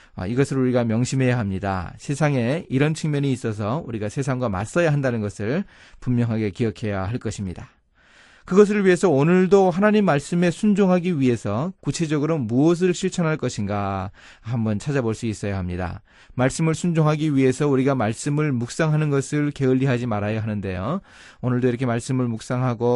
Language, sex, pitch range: Korean, male, 110-155 Hz